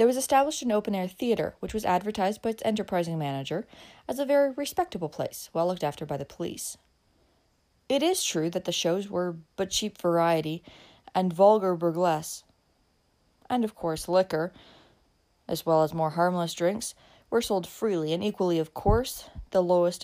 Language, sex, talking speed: English, female, 170 wpm